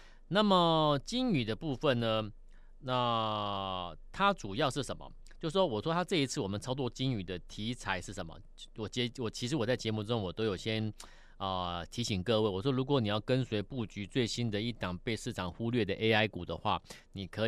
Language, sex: Chinese, male